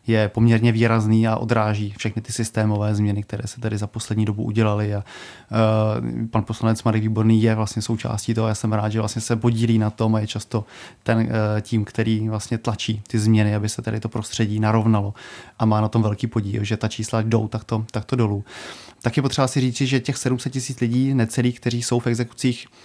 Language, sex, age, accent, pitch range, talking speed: Czech, male, 30-49, native, 110-120 Hz, 205 wpm